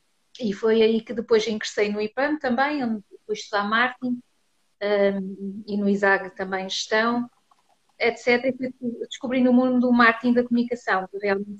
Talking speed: 150 wpm